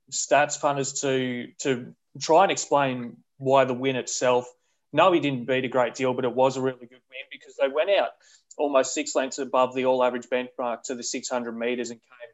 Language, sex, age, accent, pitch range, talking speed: English, male, 20-39, Australian, 120-135 Hz, 205 wpm